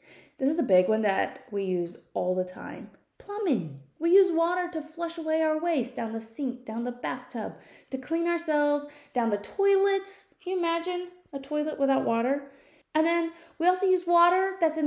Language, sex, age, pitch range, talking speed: English, female, 20-39, 230-330 Hz, 190 wpm